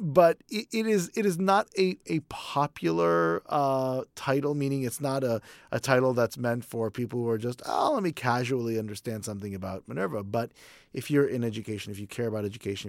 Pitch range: 105-135 Hz